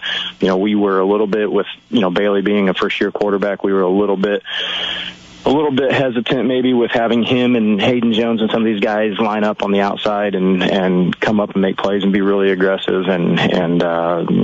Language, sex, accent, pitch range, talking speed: English, male, American, 95-105 Hz, 235 wpm